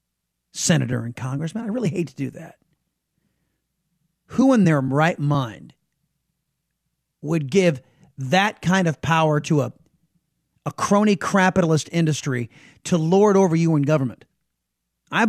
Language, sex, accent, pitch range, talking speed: English, male, American, 145-195 Hz, 130 wpm